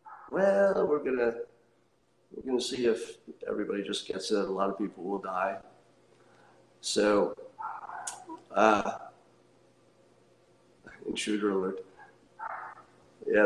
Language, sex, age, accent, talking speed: English, male, 50-69, American, 100 wpm